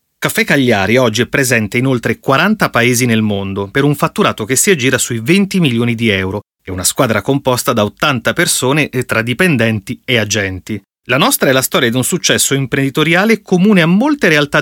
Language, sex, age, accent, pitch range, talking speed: Italian, male, 30-49, native, 120-170 Hz, 195 wpm